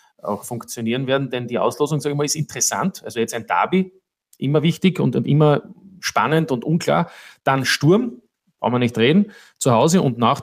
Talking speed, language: 185 wpm, German